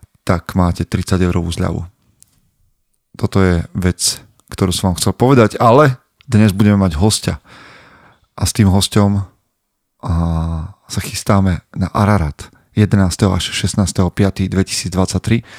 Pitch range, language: 90-105 Hz, Slovak